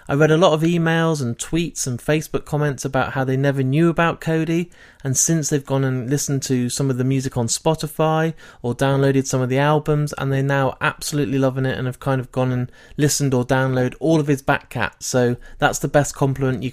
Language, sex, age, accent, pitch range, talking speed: English, male, 30-49, British, 130-155 Hz, 220 wpm